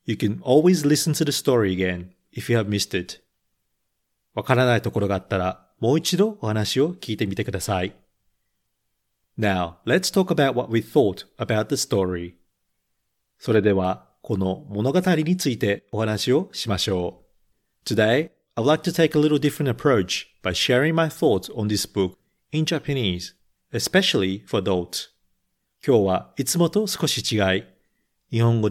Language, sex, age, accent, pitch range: Japanese, male, 40-59, native, 95-140 Hz